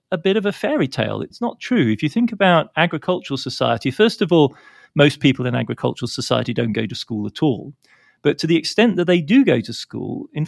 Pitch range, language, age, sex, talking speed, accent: 125-180 Hz, English, 40-59, male, 230 wpm, British